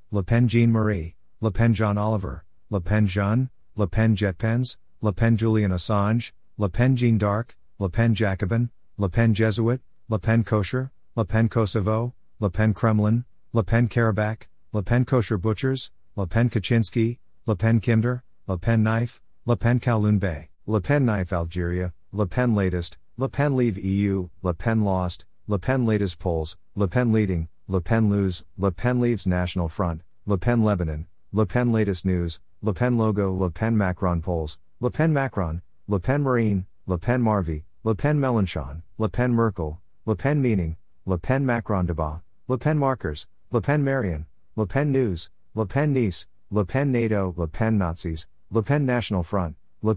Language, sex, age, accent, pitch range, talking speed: English, male, 50-69, American, 90-115 Hz, 175 wpm